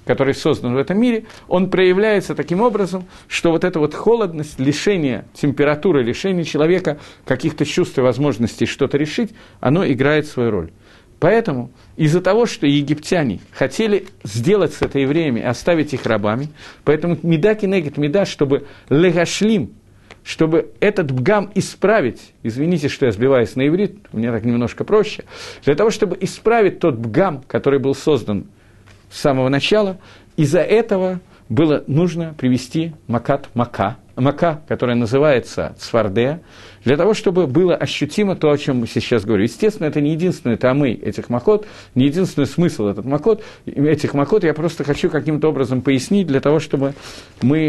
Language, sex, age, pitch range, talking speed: Russian, male, 50-69, 125-180 Hz, 150 wpm